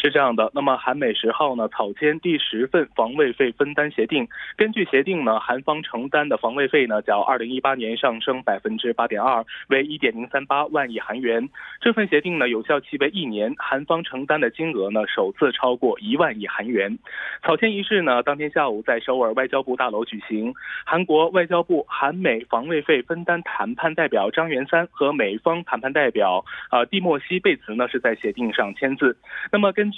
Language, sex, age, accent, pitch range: Korean, male, 20-39, Chinese, 130-200 Hz